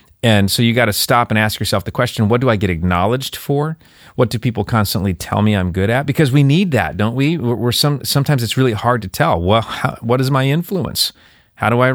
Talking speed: 245 wpm